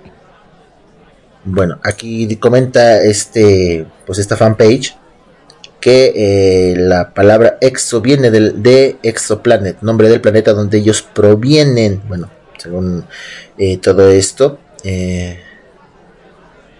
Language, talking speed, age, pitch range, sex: Spanish, 100 wpm, 30-49, 100-120 Hz, male